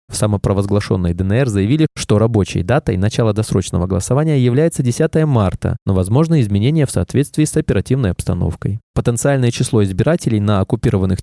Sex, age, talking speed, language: male, 20-39, 140 wpm, Russian